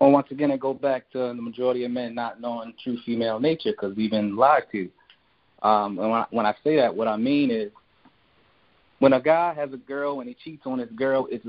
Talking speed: 240 wpm